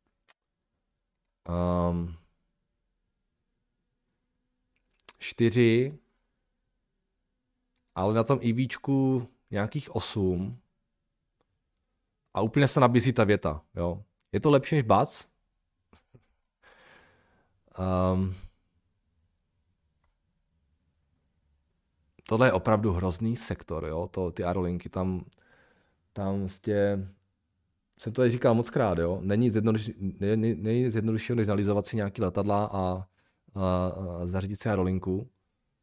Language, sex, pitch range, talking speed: Czech, male, 90-110 Hz, 85 wpm